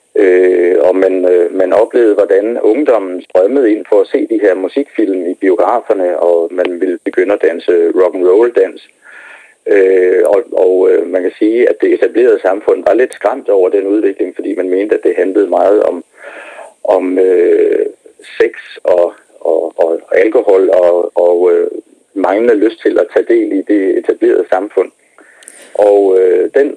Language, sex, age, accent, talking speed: Danish, male, 40-59, native, 165 wpm